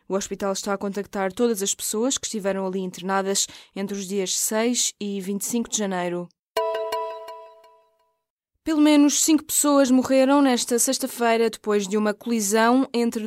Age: 20-39